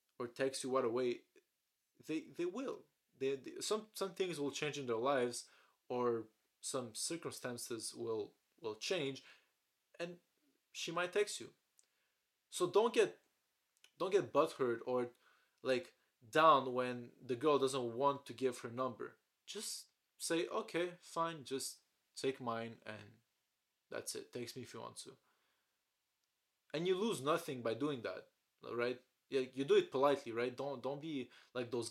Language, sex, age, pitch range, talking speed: English, male, 20-39, 125-195 Hz, 155 wpm